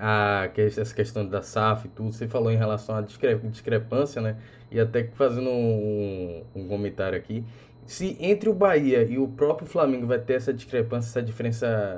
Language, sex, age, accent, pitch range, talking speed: Portuguese, male, 20-39, Brazilian, 115-145 Hz, 170 wpm